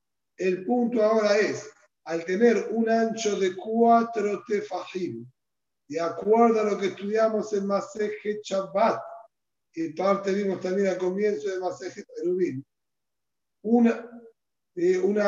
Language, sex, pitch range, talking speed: Spanish, male, 185-235 Hz, 125 wpm